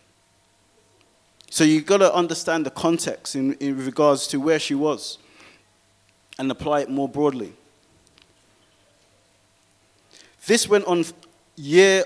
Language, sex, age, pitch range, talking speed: English, male, 20-39, 135-170 Hz, 115 wpm